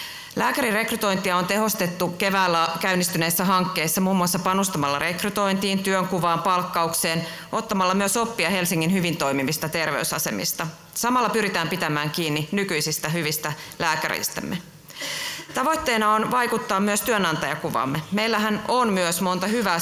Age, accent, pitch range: 30-49, native, 165-200 Hz